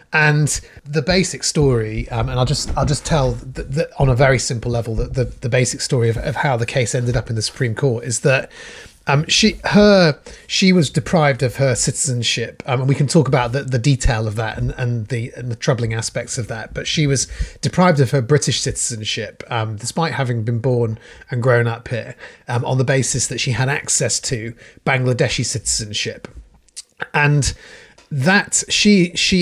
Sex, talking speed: male, 200 wpm